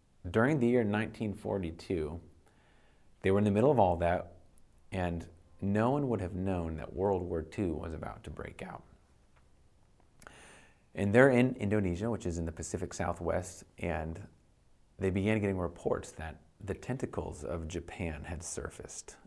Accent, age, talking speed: American, 30-49, 155 wpm